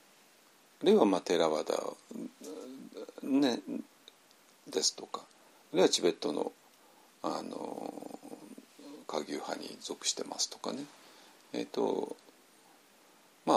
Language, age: Japanese, 40-59